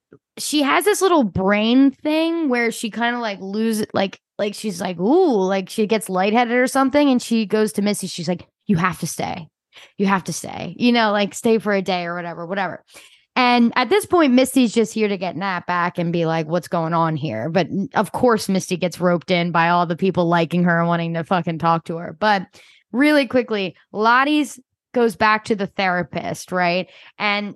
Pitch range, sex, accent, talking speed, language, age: 185-240 Hz, female, American, 210 wpm, English, 10-29